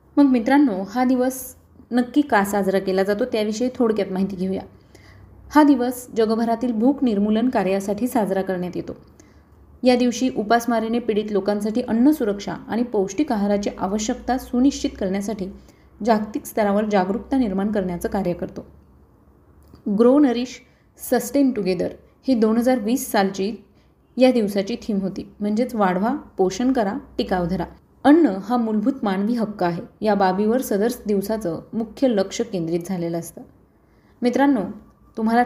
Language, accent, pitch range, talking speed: Marathi, native, 195-250 Hz, 130 wpm